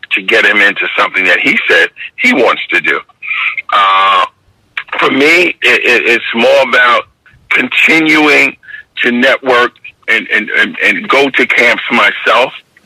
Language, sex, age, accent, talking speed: English, male, 50-69, American, 145 wpm